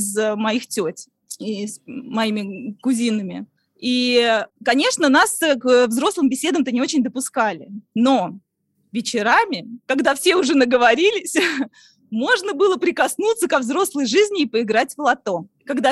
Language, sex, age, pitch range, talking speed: Russian, female, 20-39, 230-330 Hz, 125 wpm